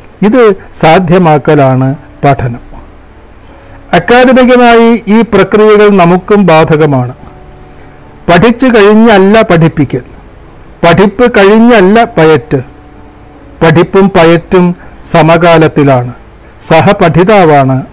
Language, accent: Malayalam, native